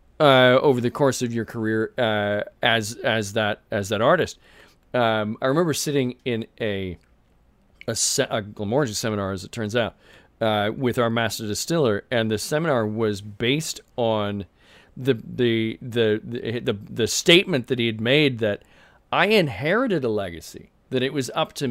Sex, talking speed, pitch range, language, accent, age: male, 170 wpm, 110-140 Hz, English, American, 40-59